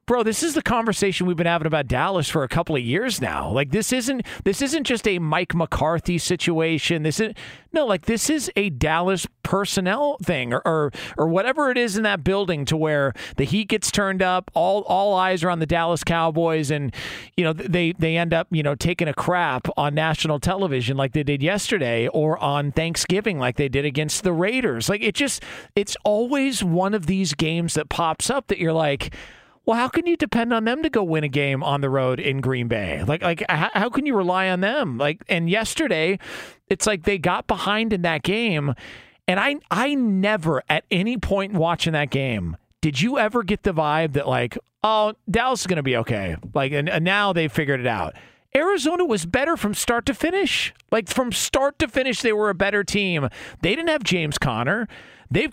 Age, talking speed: 40-59, 215 wpm